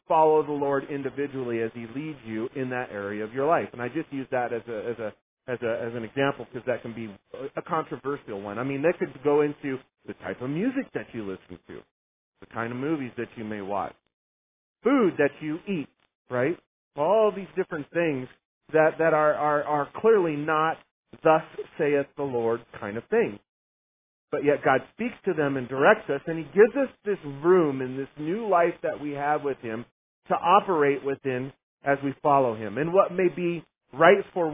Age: 40-59